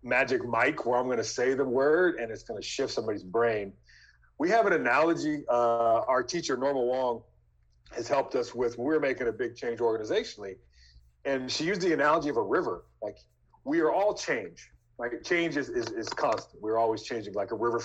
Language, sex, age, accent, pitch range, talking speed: English, male, 40-59, American, 115-155 Hz, 200 wpm